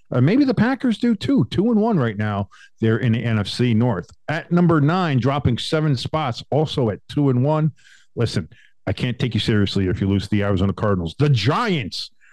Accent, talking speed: American, 200 wpm